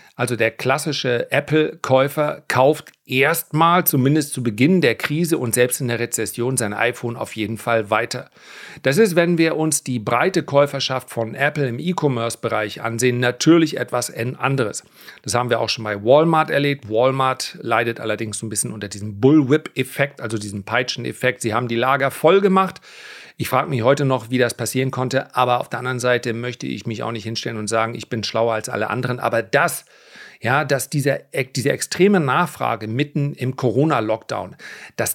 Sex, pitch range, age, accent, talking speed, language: male, 115-145 Hz, 40-59, German, 180 wpm, German